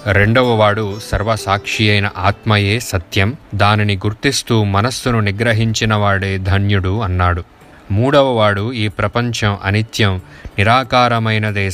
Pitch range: 100-110 Hz